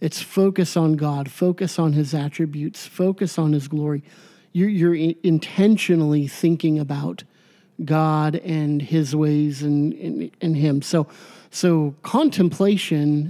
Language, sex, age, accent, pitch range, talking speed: English, male, 50-69, American, 150-180 Hz, 130 wpm